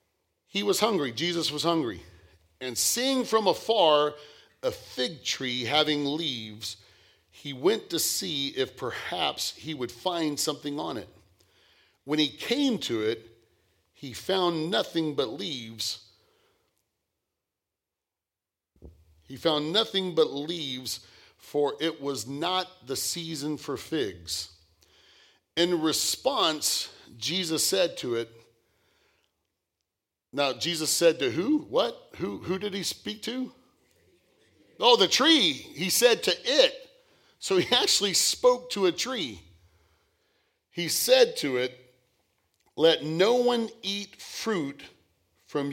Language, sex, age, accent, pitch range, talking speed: English, male, 40-59, American, 105-175 Hz, 120 wpm